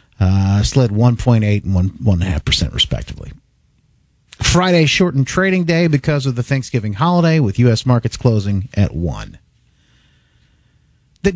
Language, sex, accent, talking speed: English, male, American, 120 wpm